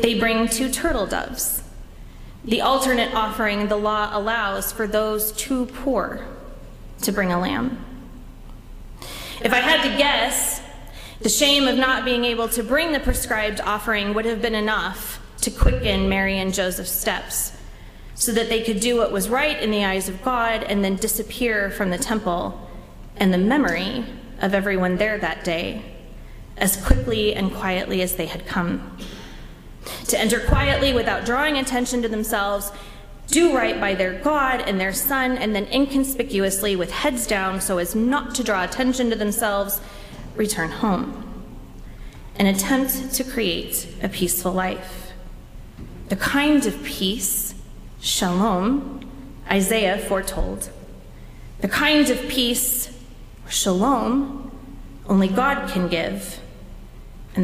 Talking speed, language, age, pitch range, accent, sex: 140 wpm, English, 20-39, 195-255 Hz, American, female